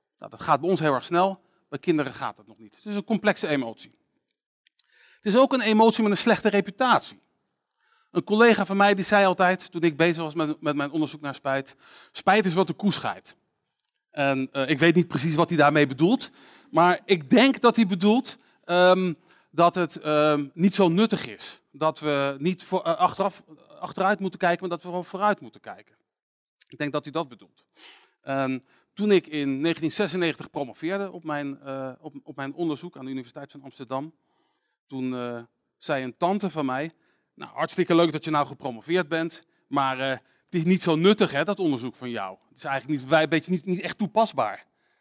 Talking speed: 190 wpm